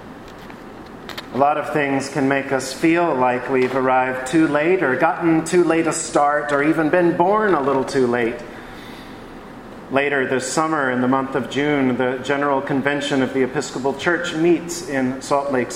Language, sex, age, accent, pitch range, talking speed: English, male, 40-59, American, 135-170 Hz, 175 wpm